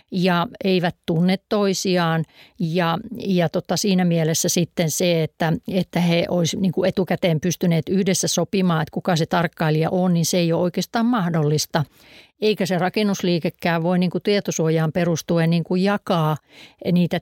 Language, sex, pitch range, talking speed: Finnish, female, 165-190 Hz, 145 wpm